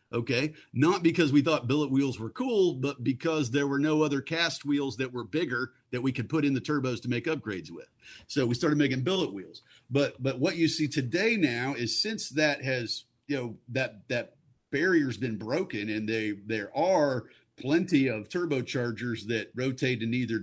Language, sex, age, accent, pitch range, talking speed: English, male, 50-69, American, 120-155 Hz, 195 wpm